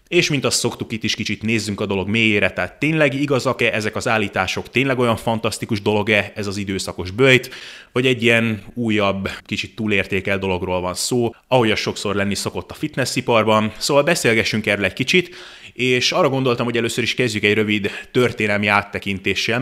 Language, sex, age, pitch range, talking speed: Hungarian, male, 30-49, 100-120 Hz, 175 wpm